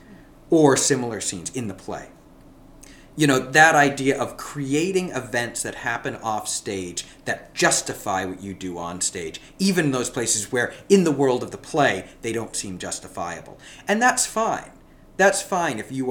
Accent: American